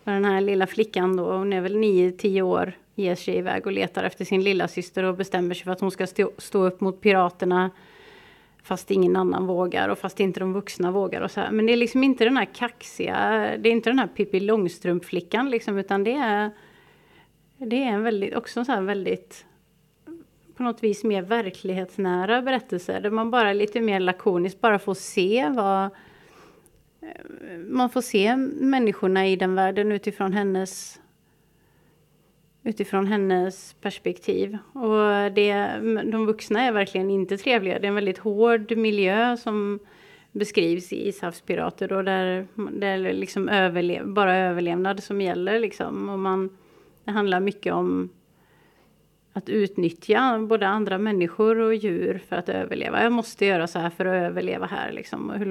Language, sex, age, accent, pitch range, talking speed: English, female, 30-49, Swedish, 185-220 Hz, 155 wpm